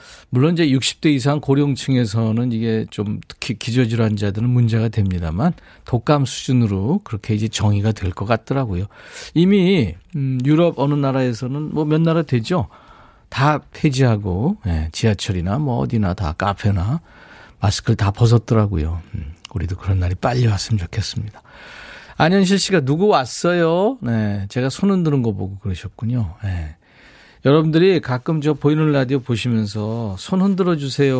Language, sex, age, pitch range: Korean, male, 40-59, 105-150 Hz